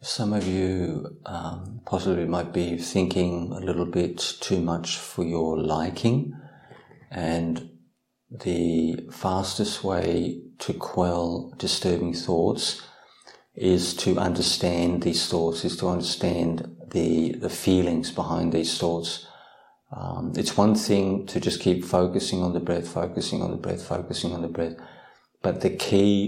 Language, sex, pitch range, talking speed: English, male, 85-90 Hz, 135 wpm